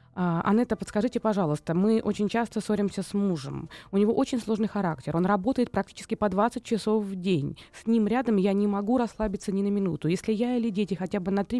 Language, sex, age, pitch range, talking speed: Russian, female, 20-39, 195-225 Hz, 205 wpm